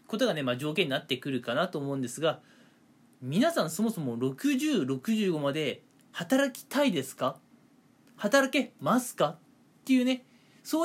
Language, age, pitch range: Japanese, 20-39, 160-265 Hz